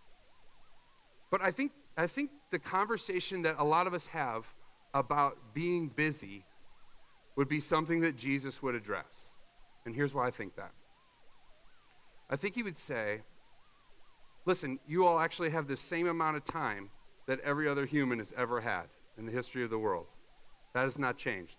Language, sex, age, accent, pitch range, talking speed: English, male, 40-59, American, 130-185 Hz, 170 wpm